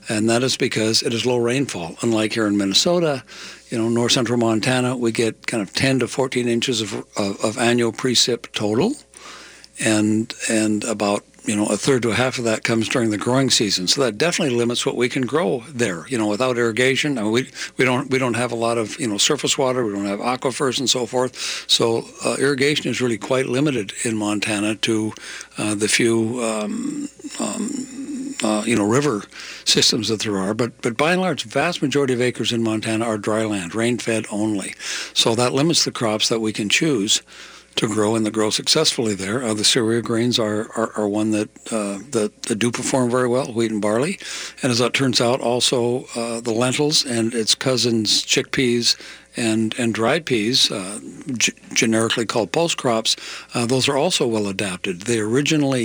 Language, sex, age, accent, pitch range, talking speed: English, male, 60-79, American, 110-130 Hz, 200 wpm